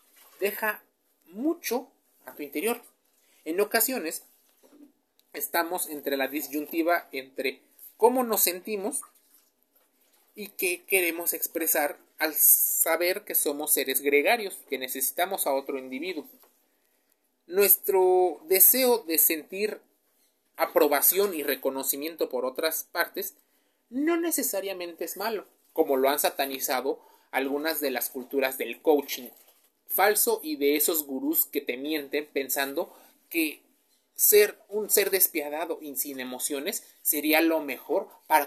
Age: 30-49